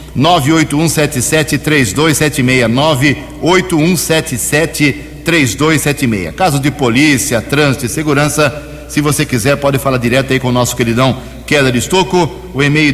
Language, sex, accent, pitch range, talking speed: Portuguese, male, Brazilian, 125-160 Hz, 110 wpm